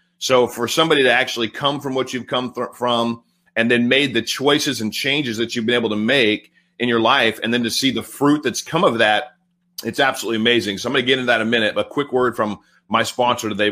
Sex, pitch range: male, 125-165 Hz